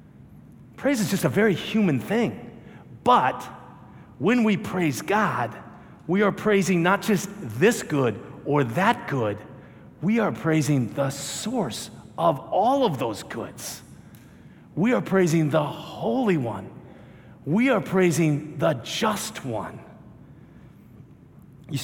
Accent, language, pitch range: American, English, 135-185 Hz